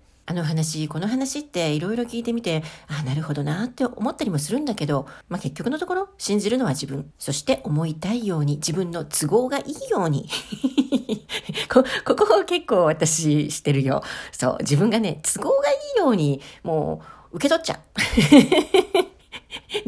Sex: female